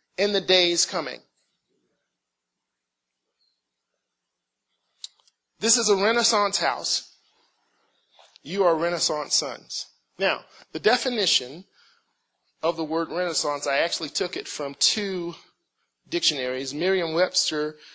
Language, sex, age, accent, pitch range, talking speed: English, male, 40-59, American, 155-235 Hz, 95 wpm